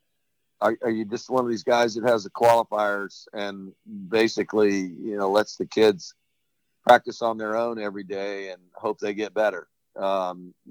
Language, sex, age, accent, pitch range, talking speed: English, male, 50-69, American, 115-135 Hz, 175 wpm